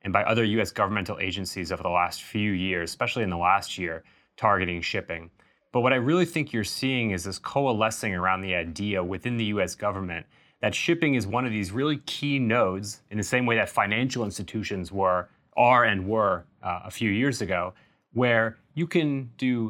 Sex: male